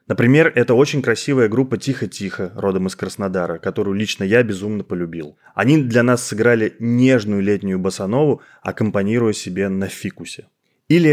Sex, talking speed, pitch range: male, 140 wpm, 100-130 Hz